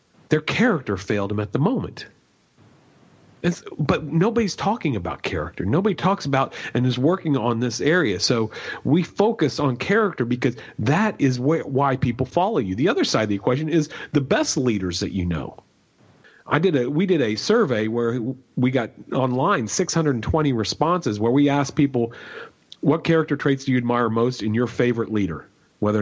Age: 40-59